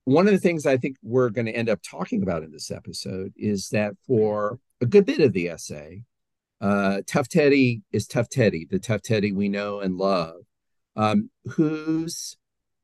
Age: 50-69